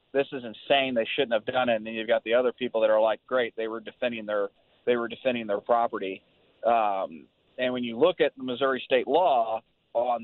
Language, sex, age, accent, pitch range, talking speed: English, male, 30-49, American, 115-135 Hz, 230 wpm